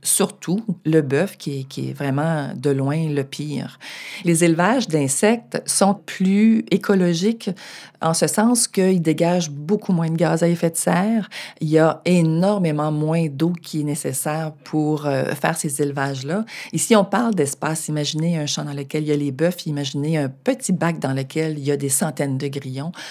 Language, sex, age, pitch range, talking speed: French, female, 40-59, 140-180 Hz, 185 wpm